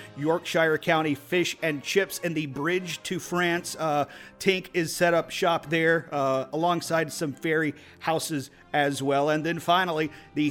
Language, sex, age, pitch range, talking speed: English, male, 40-59, 145-170 Hz, 160 wpm